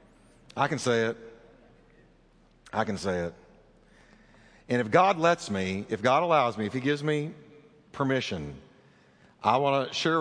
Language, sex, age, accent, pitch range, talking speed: English, male, 50-69, American, 115-190 Hz, 155 wpm